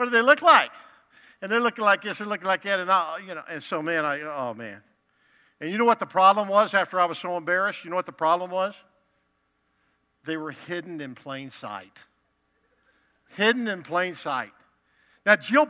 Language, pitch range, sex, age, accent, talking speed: English, 155-205 Hz, male, 50-69, American, 205 wpm